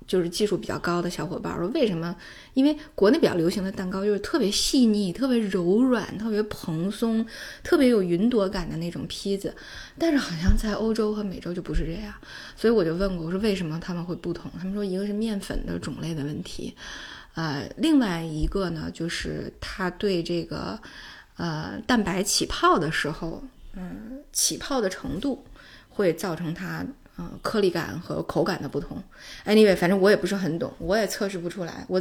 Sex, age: female, 20-39